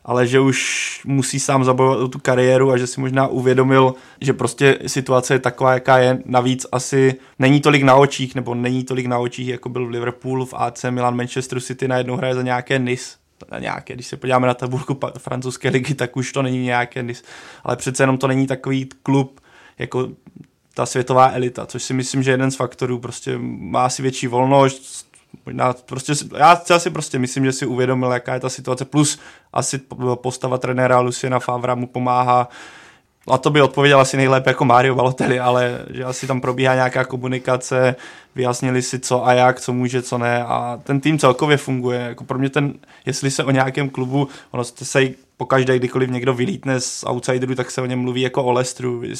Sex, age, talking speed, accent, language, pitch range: male, 20-39, 195 wpm, native, Czech, 125-135 Hz